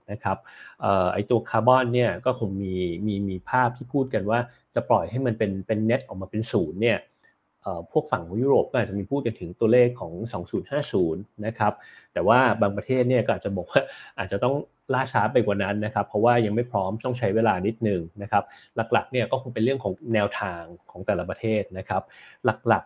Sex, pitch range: male, 100-125 Hz